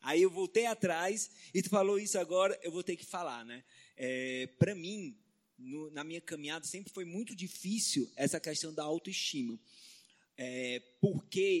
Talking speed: 165 wpm